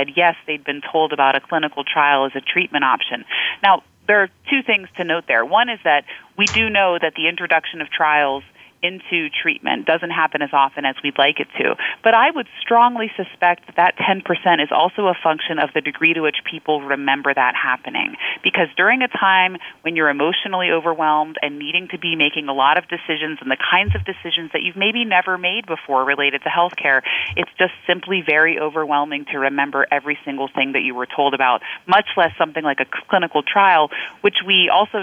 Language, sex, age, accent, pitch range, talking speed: English, female, 30-49, American, 145-185 Hz, 205 wpm